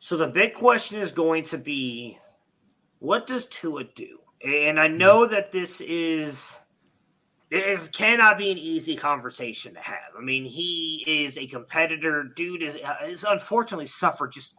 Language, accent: English, American